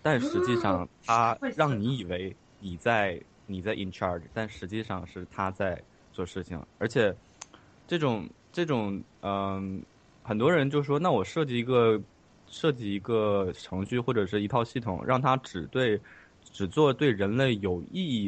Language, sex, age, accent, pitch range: Chinese, male, 20-39, native, 95-115 Hz